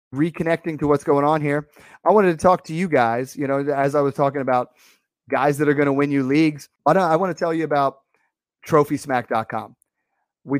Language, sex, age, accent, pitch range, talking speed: English, male, 30-49, American, 130-155 Hz, 205 wpm